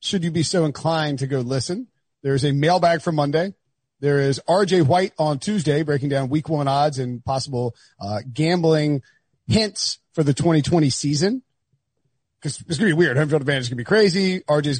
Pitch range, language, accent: 130-160 Hz, English, American